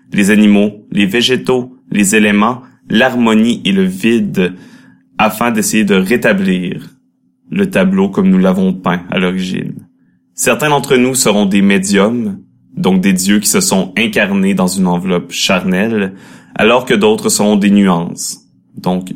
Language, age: French, 30-49